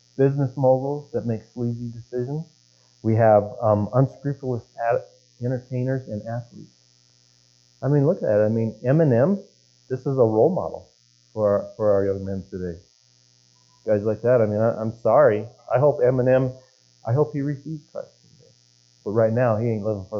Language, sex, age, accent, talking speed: English, male, 40-59, American, 170 wpm